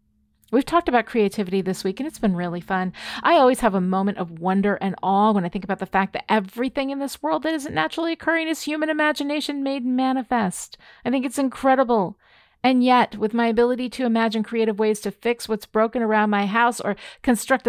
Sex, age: female, 40-59